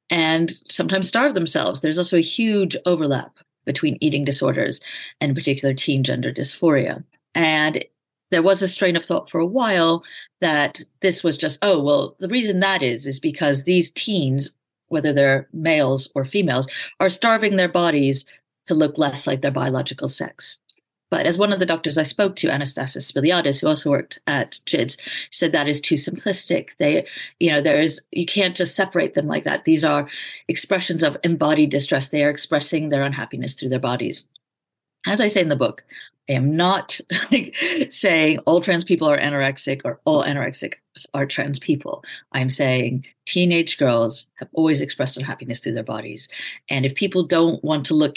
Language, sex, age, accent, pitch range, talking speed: English, female, 40-59, American, 140-180 Hz, 180 wpm